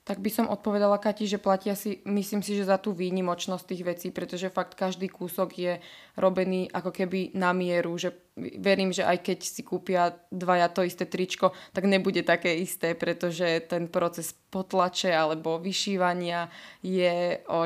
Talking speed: 165 wpm